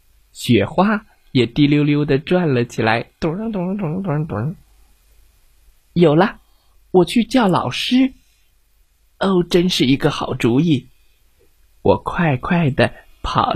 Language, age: Chinese, 20-39